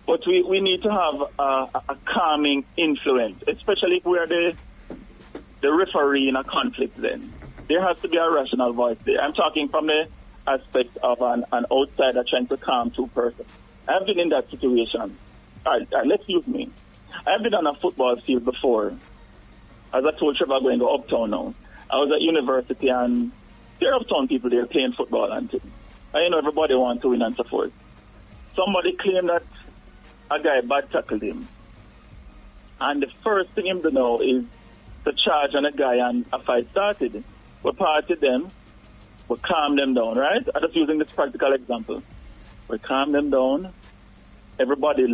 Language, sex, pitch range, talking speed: English, male, 125-180 Hz, 180 wpm